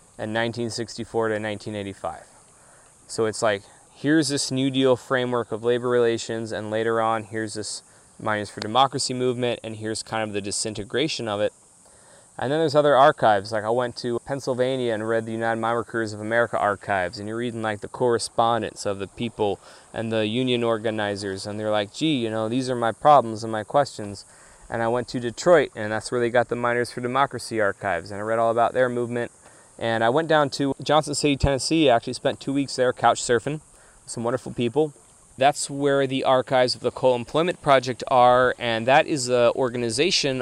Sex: male